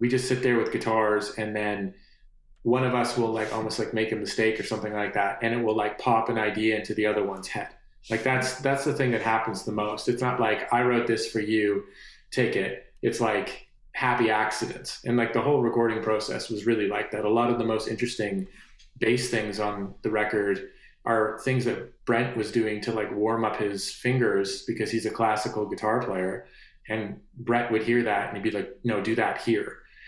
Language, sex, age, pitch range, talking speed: English, male, 30-49, 110-120 Hz, 215 wpm